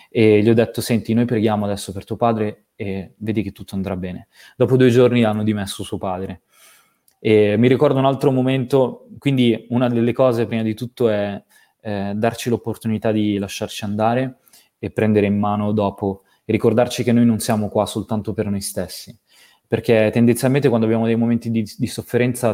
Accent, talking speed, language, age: native, 185 wpm, Italian, 20-39